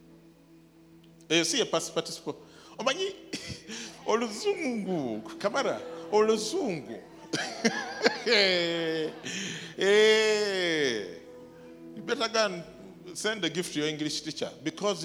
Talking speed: 60 wpm